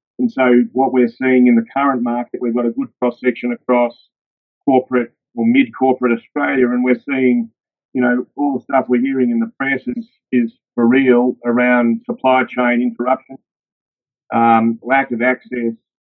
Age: 40-59